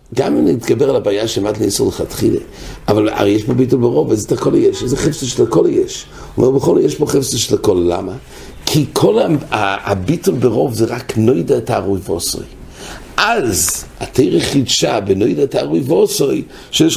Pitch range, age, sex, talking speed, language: 110-165 Hz, 60-79, male, 135 wpm, English